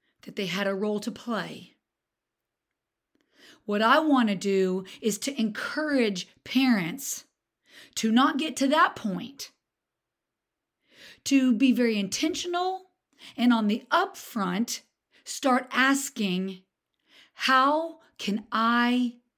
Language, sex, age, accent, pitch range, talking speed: English, female, 40-59, American, 205-275 Hz, 110 wpm